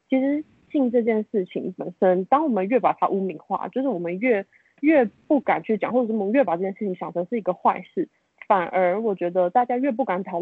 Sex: female